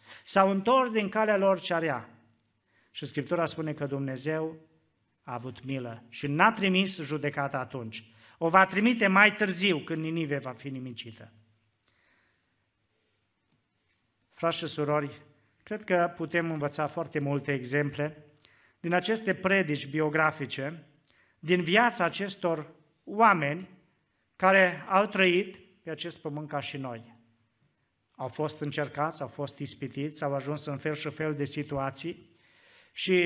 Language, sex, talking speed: Romanian, male, 130 wpm